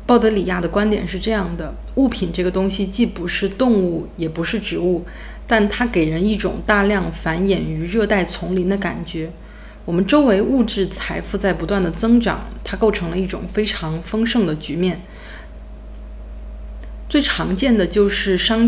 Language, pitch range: Chinese, 170-210 Hz